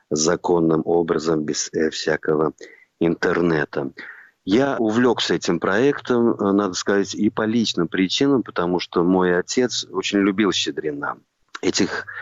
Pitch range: 90-115 Hz